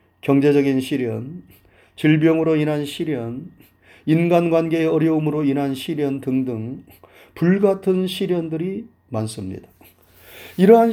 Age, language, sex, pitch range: 40-59, Korean, male, 115-180 Hz